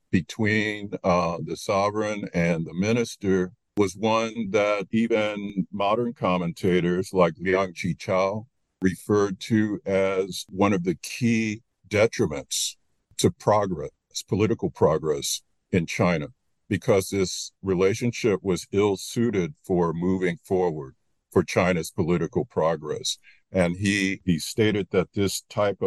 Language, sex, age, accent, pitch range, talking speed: English, male, 50-69, American, 95-115 Hz, 115 wpm